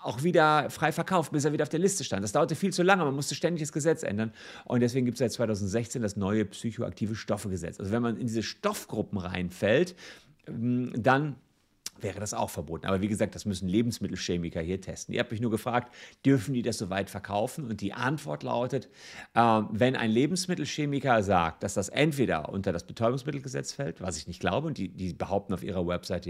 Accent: German